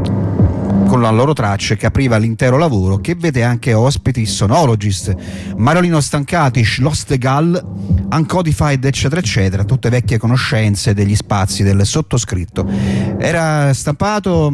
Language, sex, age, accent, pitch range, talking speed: Italian, male, 40-59, native, 105-135 Hz, 120 wpm